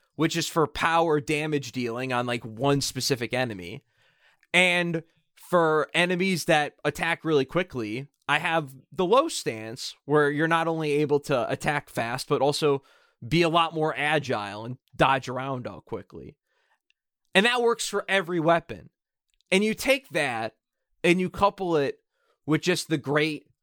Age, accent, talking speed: 20-39, American, 155 wpm